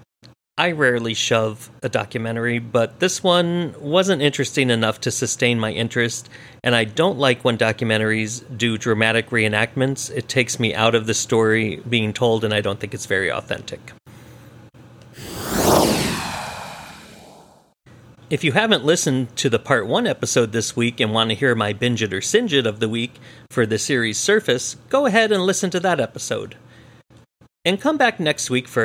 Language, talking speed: English, 170 wpm